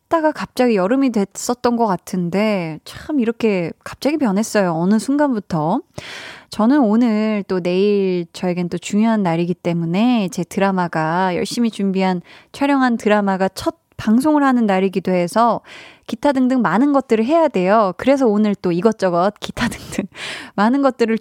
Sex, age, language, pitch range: female, 20-39, Korean, 185-245 Hz